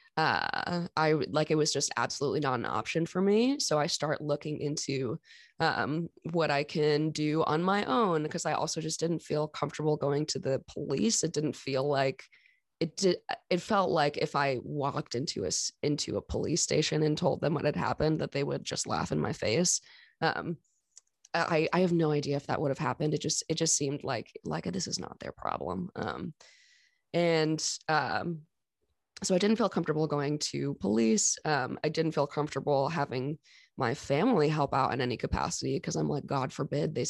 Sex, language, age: female, English, 20-39